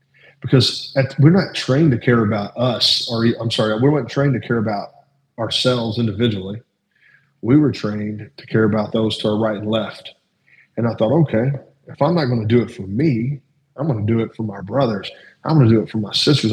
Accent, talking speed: American, 220 wpm